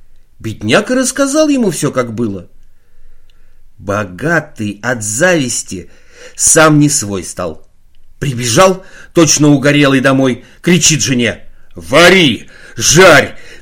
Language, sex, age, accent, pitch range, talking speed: Russian, male, 50-69, native, 105-160 Hz, 95 wpm